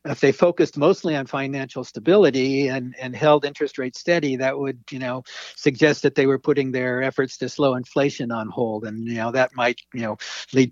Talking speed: 205 wpm